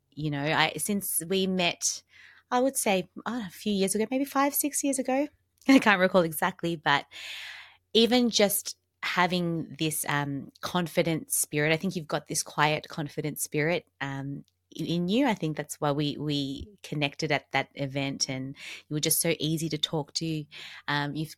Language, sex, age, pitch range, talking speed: English, female, 20-39, 145-175 Hz, 180 wpm